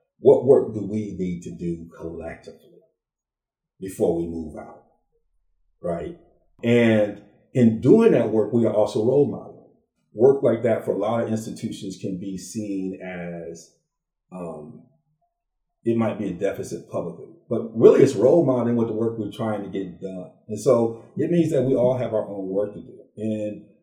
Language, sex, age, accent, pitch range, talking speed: English, male, 40-59, American, 100-125 Hz, 175 wpm